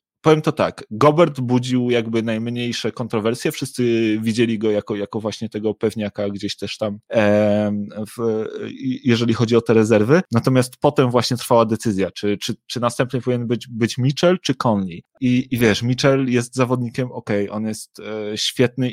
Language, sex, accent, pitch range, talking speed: Polish, male, native, 115-130 Hz, 170 wpm